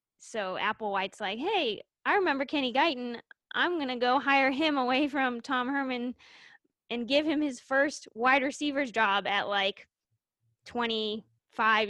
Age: 20-39